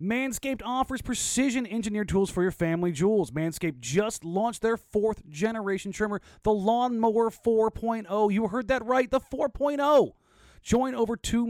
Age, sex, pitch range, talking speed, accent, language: 30-49, male, 170-245 Hz, 135 wpm, American, English